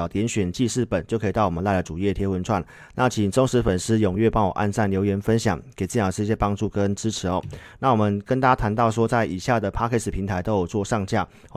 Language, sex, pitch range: Chinese, male, 95-115 Hz